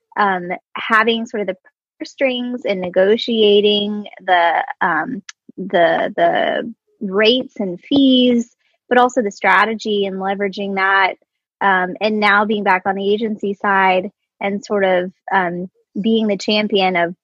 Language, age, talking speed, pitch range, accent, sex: English, 20-39, 135 wpm, 190-230 Hz, American, female